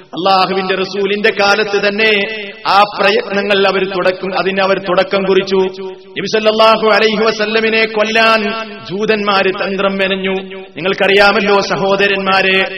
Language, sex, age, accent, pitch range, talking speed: Malayalam, male, 30-49, native, 190-210 Hz, 90 wpm